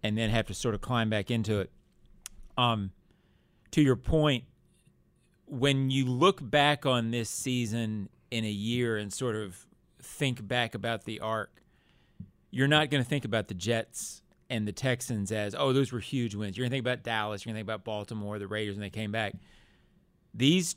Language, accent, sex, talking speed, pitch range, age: English, American, male, 195 wpm, 110-150 Hz, 40-59